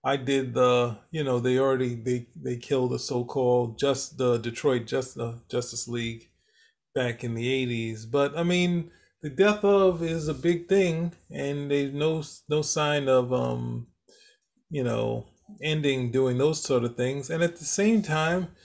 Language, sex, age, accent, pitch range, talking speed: English, male, 20-39, American, 120-150 Hz, 165 wpm